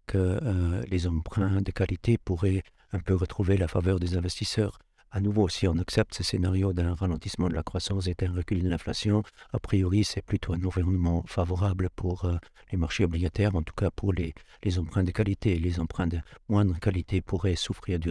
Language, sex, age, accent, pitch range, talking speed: French, male, 60-79, French, 90-105 Hz, 200 wpm